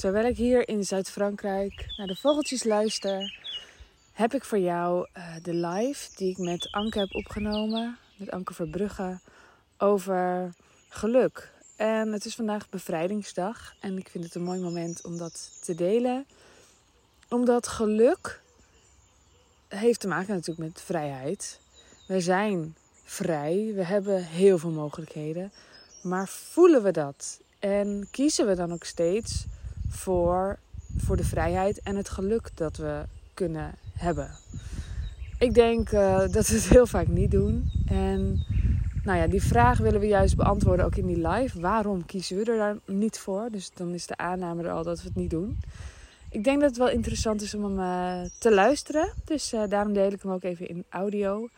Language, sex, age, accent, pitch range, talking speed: Dutch, female, 20-39, Dutch, 170-210 Hz, 165 wpm